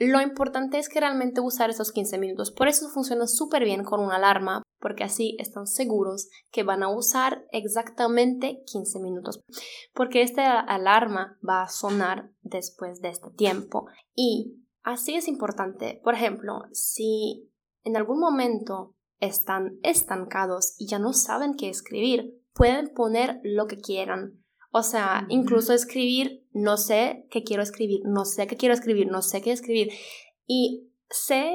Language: Spanish